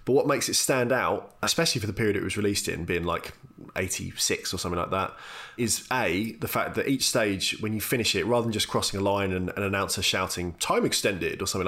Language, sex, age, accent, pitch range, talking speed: English, male, 20-39, British, 95-110 Hz, 235 wpm